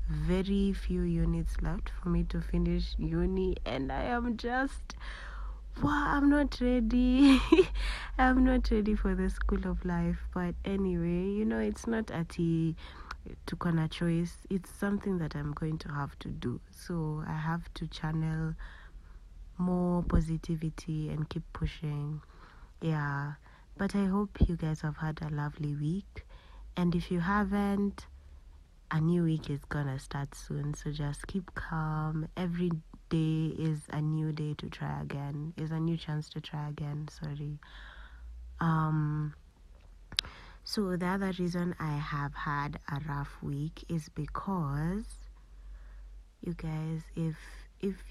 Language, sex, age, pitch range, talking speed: English, female, 30-49, 150-180 Hz, 145 wpm